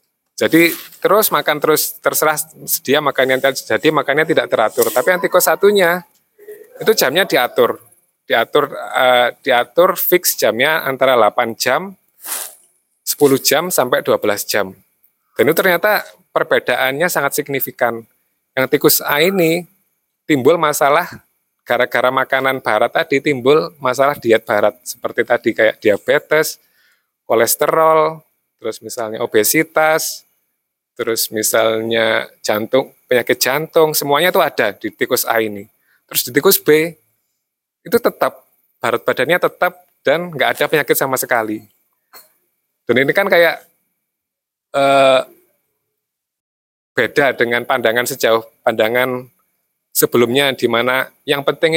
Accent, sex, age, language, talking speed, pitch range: native, male, 20-39, Indonesian, 115 wpm, 120-165 Hz